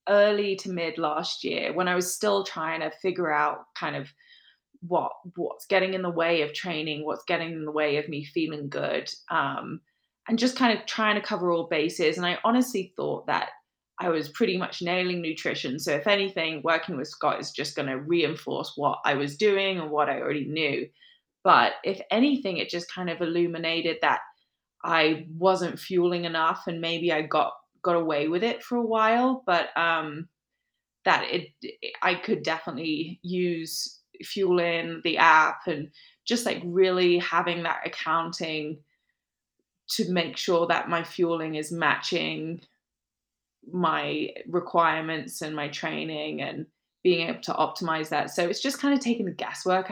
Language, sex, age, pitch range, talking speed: English, female, 20-39, 160-200 Hz, 175 wpm